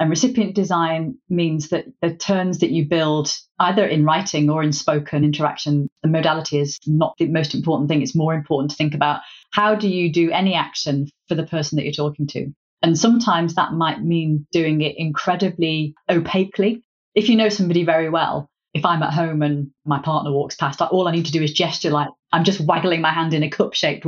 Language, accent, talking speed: English, British, 210 wpm